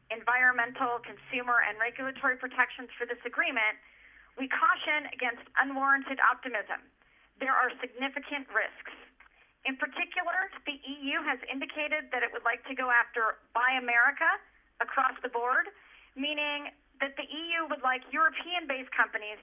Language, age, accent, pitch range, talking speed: English, 40-59, American, 240-290 Hz, 135 wpm